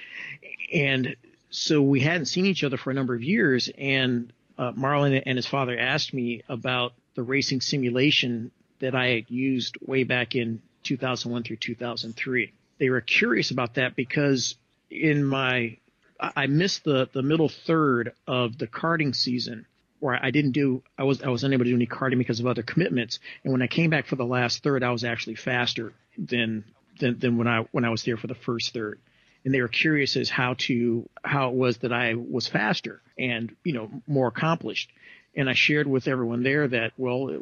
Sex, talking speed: male, 200 wpm